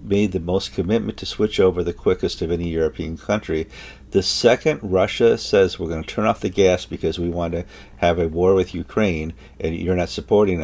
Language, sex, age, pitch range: English, male, 50-69, 80-105 Hz